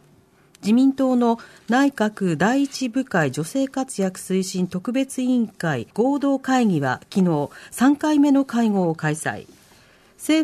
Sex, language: female, Japanese